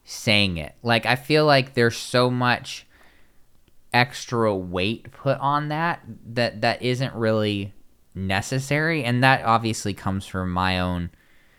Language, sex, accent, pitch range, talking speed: English, male, American, 95-140 Hz, 135 wpm